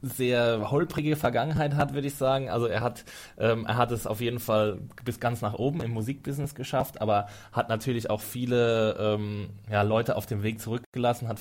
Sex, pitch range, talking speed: male, 110-140 Hz, 195 wpm